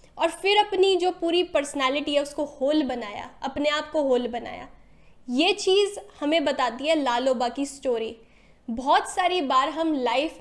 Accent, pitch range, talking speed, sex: native, 270-335 Hz, 160 wpm, female